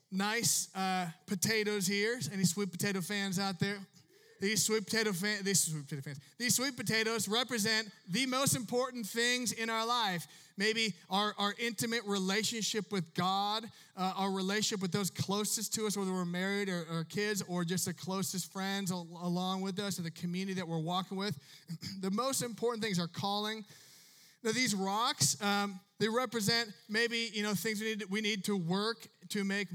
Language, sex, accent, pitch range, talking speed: English, male, American, 180-215 Hz, 185 wpm